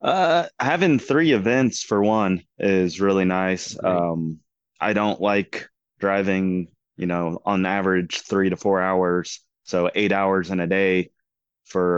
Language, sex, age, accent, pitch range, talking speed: English, male, 20-39, American, 90-105 Hz, 145 wpm